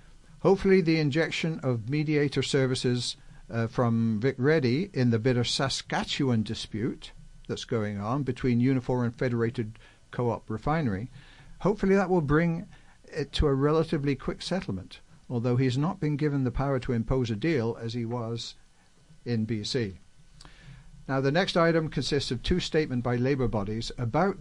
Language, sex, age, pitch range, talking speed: English, male, 60-79, 115-150 Hz, 150 wpm